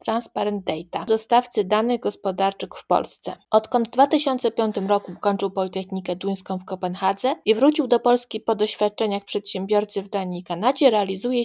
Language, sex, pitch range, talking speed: Polish, female, 190-245 Hz, 145 wpm